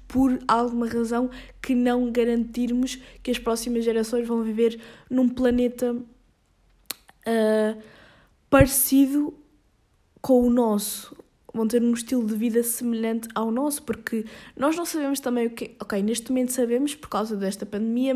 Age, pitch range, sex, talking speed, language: 20-39, 230-260 Hz, female, 140 wpm, Portuguese